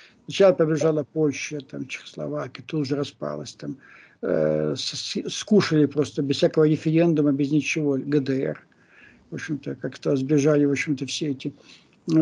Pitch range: 140-180 Hz